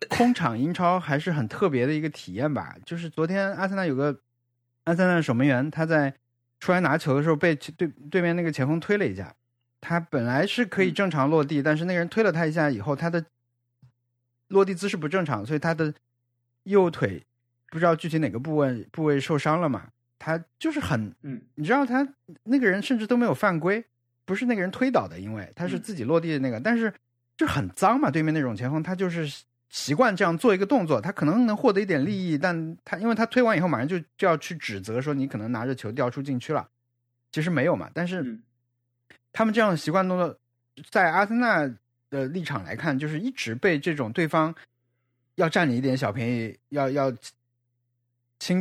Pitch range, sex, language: 120-180 Hz, male, Chinese